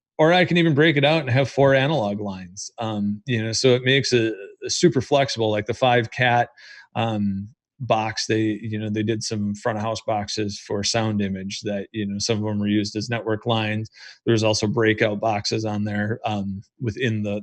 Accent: American